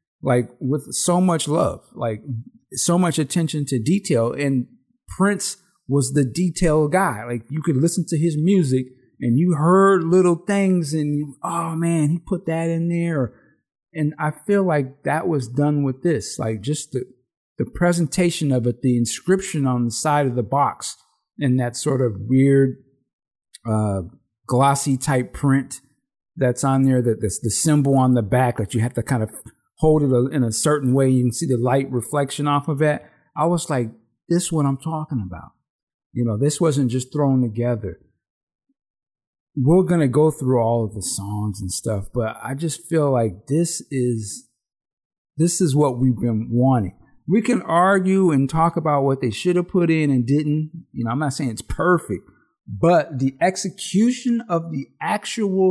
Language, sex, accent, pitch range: English, male, American, 125-170 Hz